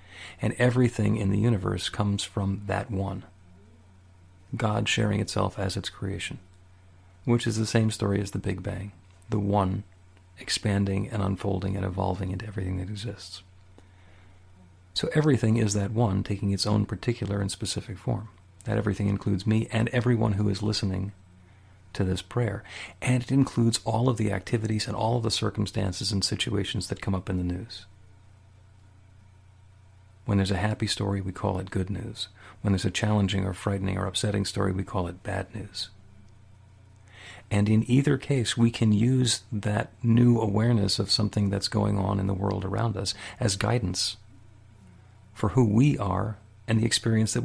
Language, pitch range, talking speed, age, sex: English, 95-110 Hz, 170 wpm, 40-59, male